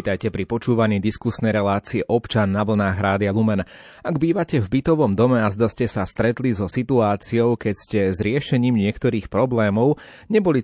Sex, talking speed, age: male, 160 wpm, 30-49